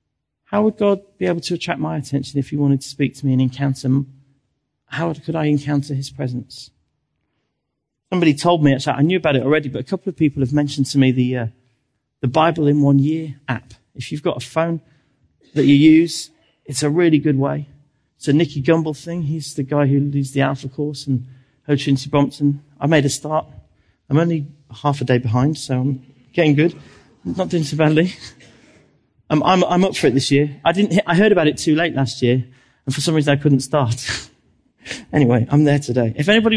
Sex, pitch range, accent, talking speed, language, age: male, 125-155 Hz, British, 205 wpm, English, 40-59